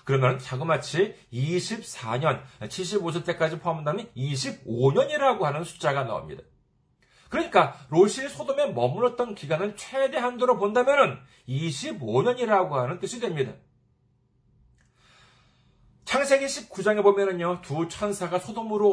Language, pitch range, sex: Korean, 145-240 Hz, male